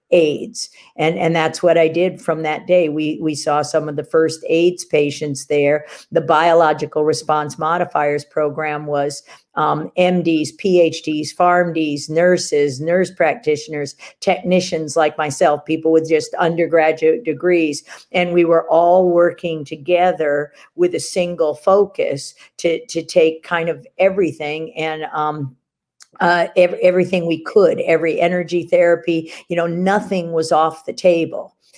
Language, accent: English, American